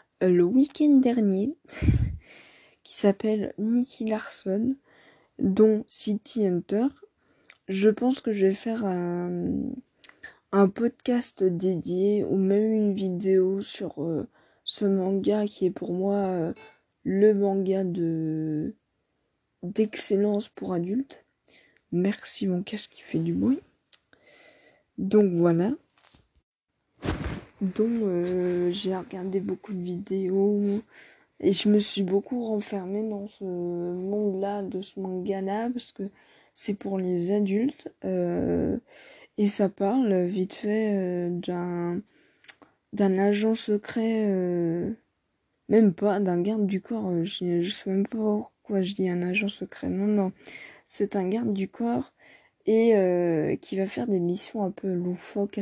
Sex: female